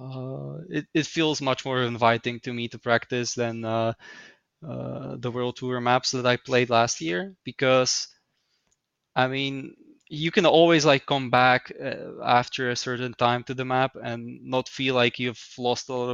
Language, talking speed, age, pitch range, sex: English, 180 wpm, 20-39, 120-135 Hz, male